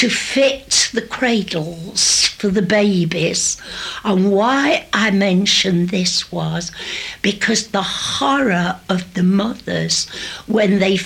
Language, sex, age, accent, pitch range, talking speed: English, female, 60-79, British, 175-215 Hz, 115 wpm